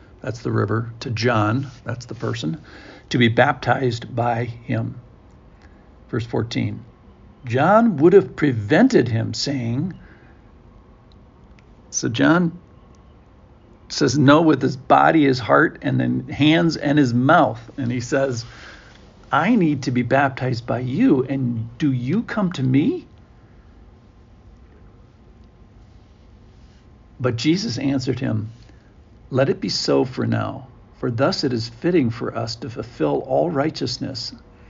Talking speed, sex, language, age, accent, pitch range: 125 wpm, male, English, 60-79, American, 115-135 Hz